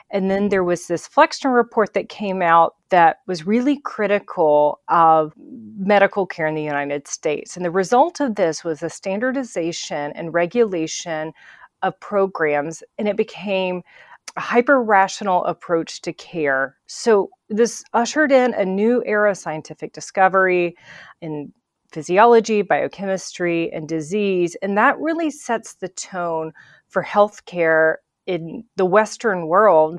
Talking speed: 135 wpm